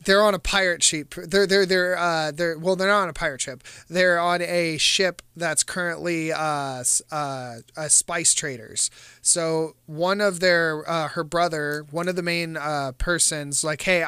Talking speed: 185 wpm